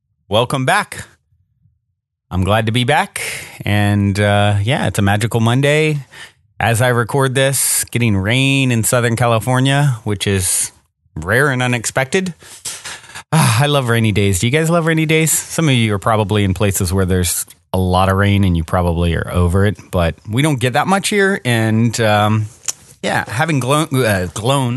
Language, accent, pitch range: English, American, 105-135 Hz